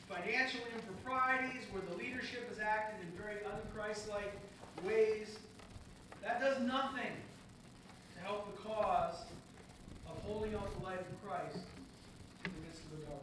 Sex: male